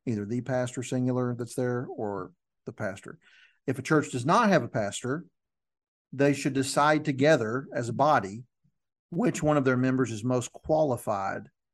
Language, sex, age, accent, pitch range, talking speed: English, male, 50-69, American, 120-135 Hz, 165 wpm